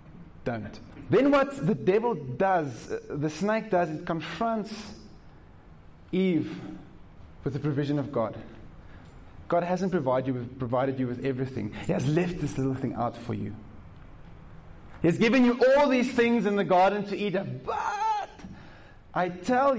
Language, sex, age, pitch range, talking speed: English, male, 30-49, 130-195 Hz, 160 wpm